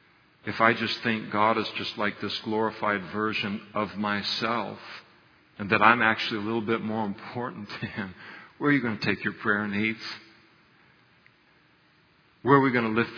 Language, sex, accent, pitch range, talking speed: English, male, American, 100-115 Hz, 180 wpm